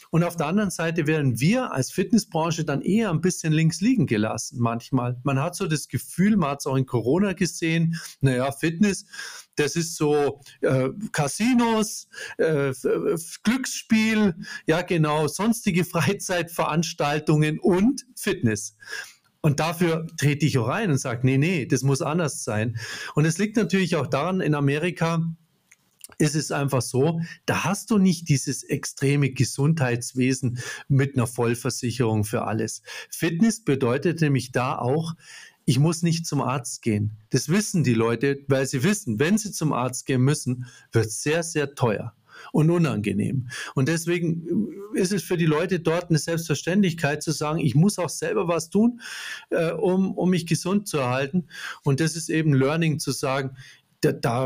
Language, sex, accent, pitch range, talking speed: German, male, German, 135-180 Hz, 160 wpm